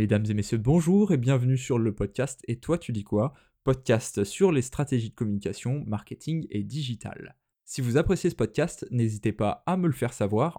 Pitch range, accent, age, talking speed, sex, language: 110-140 Hz, French, 20-39, 200 wpm, male, French